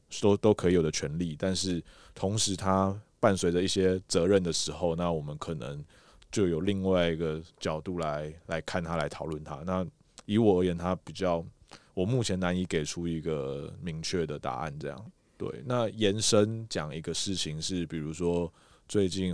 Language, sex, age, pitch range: Chinese, male, 20-39, 85-95 Hz